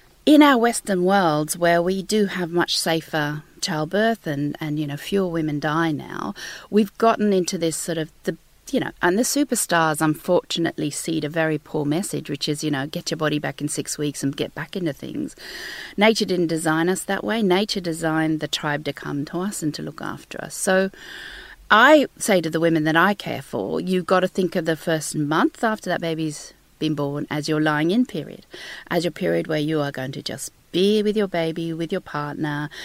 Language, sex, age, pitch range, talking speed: English, female, 40-59, 150-190 Hz, 210 wpm